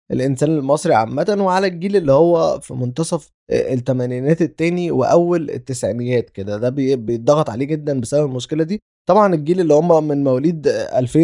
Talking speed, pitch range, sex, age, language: 155 wpm, 130-175 Hz, male, 20-39, Arabic